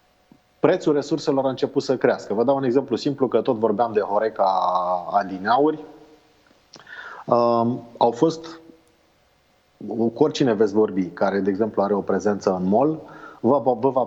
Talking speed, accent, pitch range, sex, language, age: 160 wpm, native, 110-135 Hz, male, Romanian, 30-49